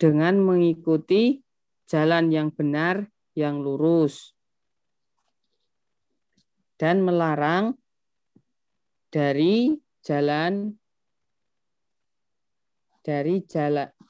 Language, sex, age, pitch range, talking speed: Indonesian, female, 20-39, 155-195 Hz, 55 wpm